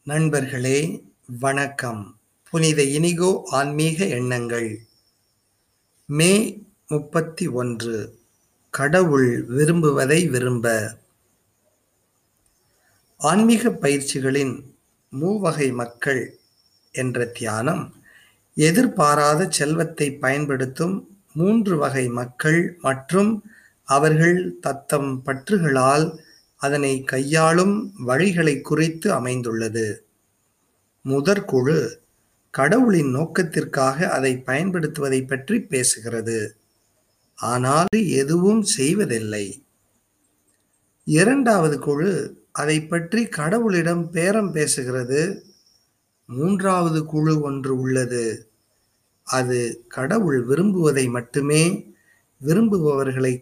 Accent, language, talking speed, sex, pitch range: native, Tamil, 65 wpm, male, 120-170 Hz